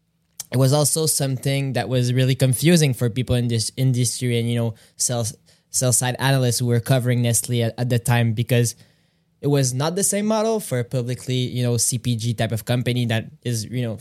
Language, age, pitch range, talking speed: English, 20-39, 120-135 Hz, 205 wpm